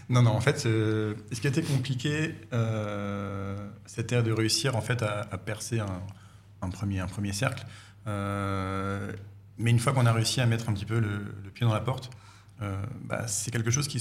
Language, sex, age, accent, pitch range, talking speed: French, male, 40-59, French, 100-115 Hz, 205 wpm